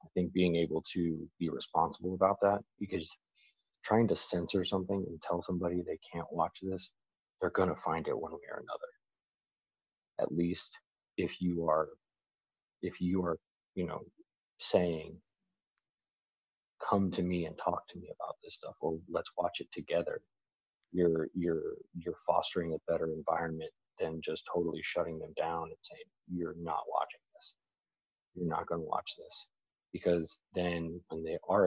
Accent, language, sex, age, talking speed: American, English, male, 30-49, 165 wpm